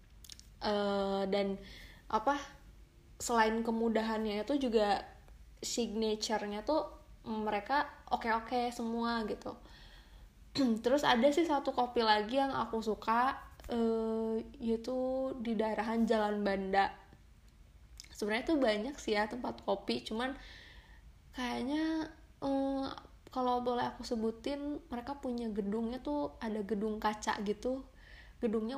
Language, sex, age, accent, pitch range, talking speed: Indonesian, female, 20-39, native, 215-250 Hz, 105 wpm